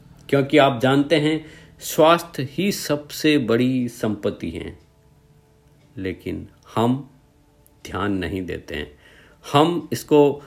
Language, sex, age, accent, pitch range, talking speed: Hindi, male, 50-69, native, 110-160 Hz, 105 wpm